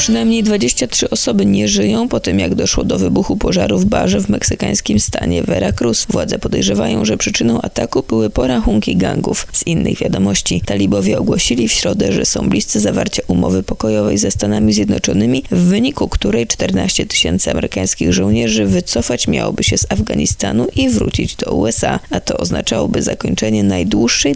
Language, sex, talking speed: Polish, female, 155 wpm